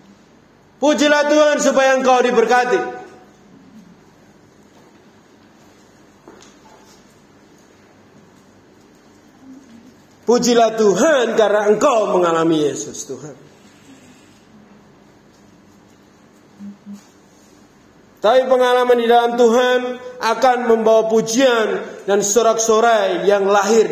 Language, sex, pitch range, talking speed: Indonesian, male, 160-235 Hz, 60 wpm